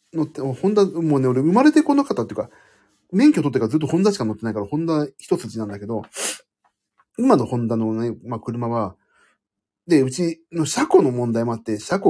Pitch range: 105-175 Hz